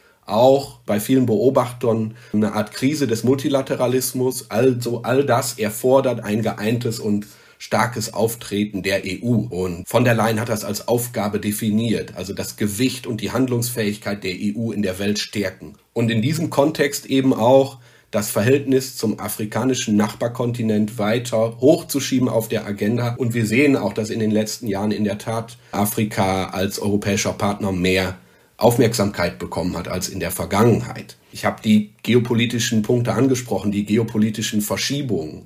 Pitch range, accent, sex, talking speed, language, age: 105-125 Hz, German, male, 150 wpm, German, 40-59